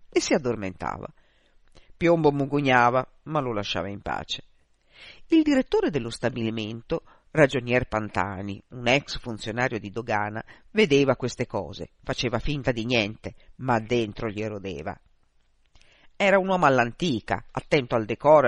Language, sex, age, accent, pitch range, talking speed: Italian, female, 50-69, native, 120-175 Hz, 125 wpm